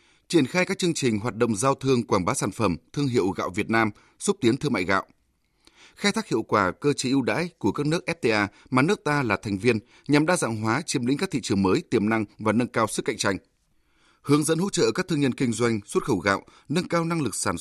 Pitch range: 115-155 Hz